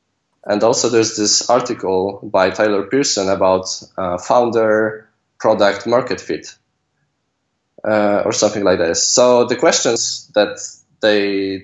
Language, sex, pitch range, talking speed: English, male, 100-115 Hz, 125 wpm